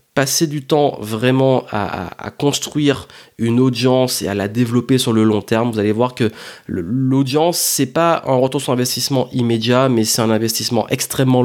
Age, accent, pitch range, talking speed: 30-49, French, 110-135 Hz, 185 wpm